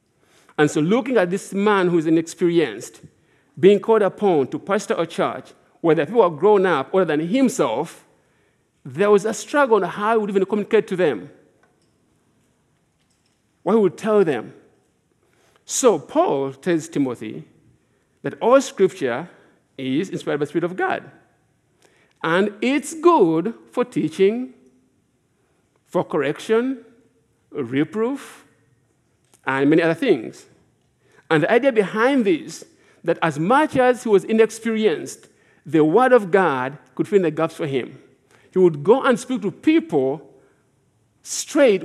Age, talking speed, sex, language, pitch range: 50-69, 140 wpm, male, English, 150-225 Hz